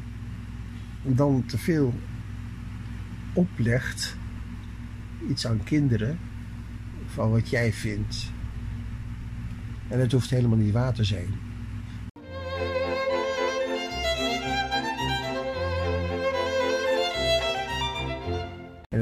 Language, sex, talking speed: Dutch, male, 65 wpm